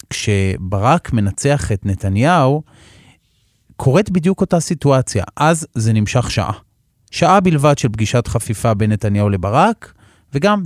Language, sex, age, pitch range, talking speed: Hebrew, male, 30-49, 105-135 Hz, 120 wpm